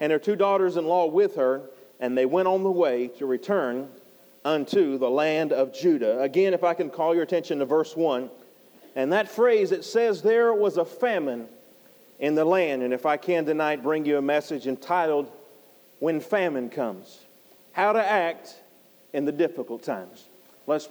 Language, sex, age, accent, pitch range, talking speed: English, male, 40-59, American, 145-185 Hz, 180 wpm